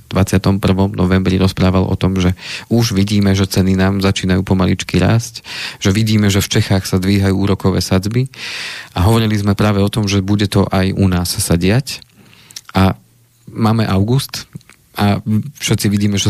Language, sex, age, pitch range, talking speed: Slovak, male, 40-59, 100-110 Hz, 160 wpm